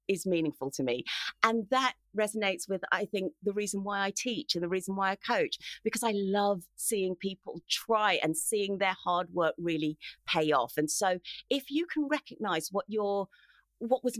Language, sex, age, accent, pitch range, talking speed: English, female, 40-59, British, 180-235 Hz, 190 wpm